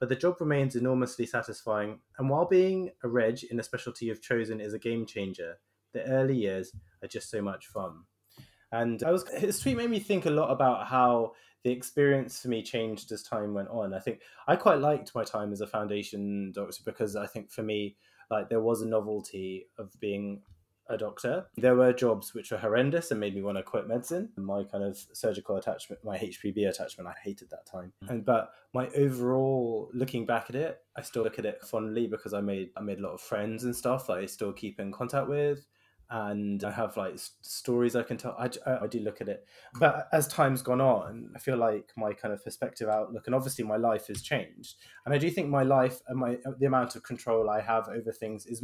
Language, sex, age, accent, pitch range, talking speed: English, male, 20-39, British, 105-125 Hz, 225 wpm